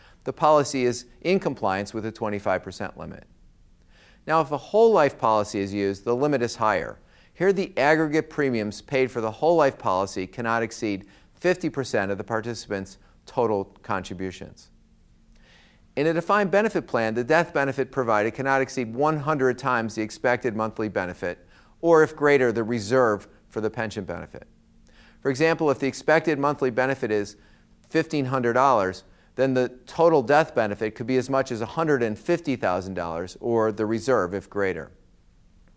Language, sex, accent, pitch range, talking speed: English, male, American, 105-145 Hz, 150 wpm